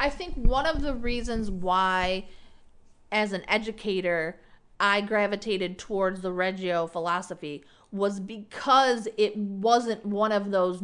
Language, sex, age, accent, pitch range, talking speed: English, female, 30-49, American, 190-240 Hz, 125 wpm